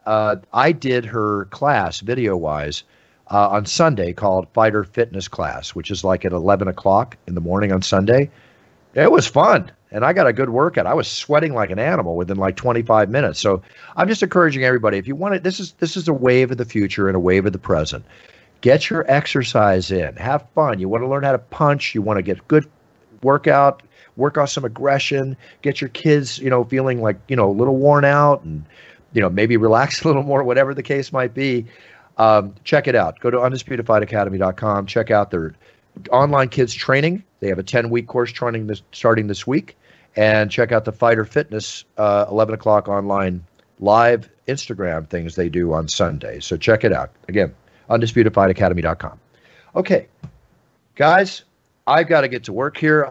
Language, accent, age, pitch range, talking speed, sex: English, American, 50-69, 100-135 Hz, 195 wpm, male